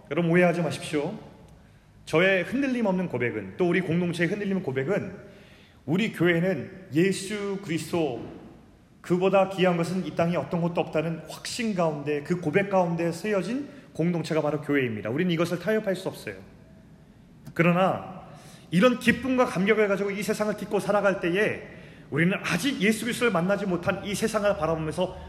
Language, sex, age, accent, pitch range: Korean, male, 30-49, native, 140-190 Hz